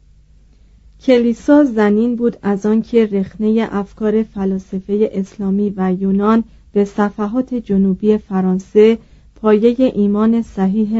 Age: 40-59